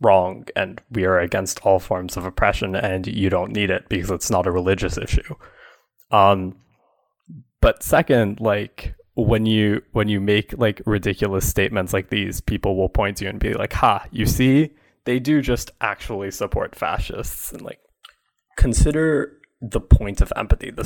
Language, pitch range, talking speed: English, 95-125 Hz, 170 wpm